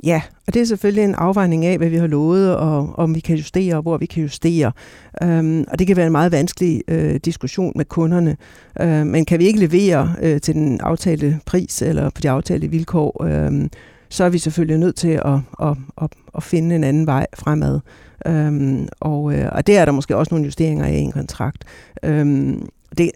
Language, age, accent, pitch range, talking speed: Danish, 60-79, native, 150-175 Hz, 180 wpm